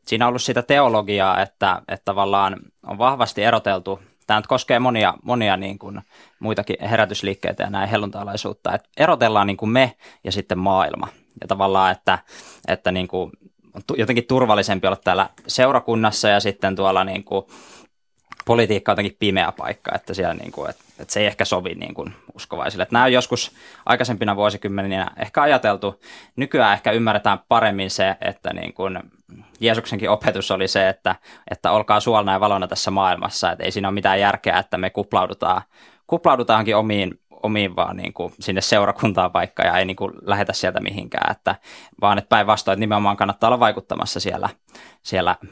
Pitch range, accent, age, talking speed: 95-110 Hz, native, 20-39, 165 wpm